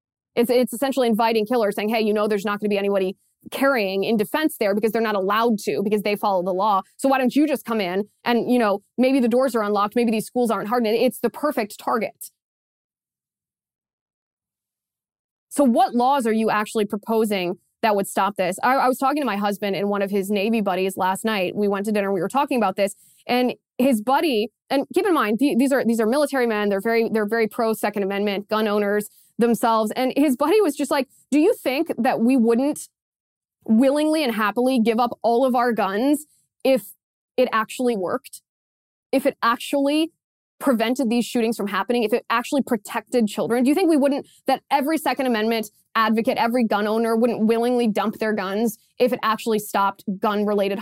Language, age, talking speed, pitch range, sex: English, 20-39, 205 wpm, 210-260 Hz, female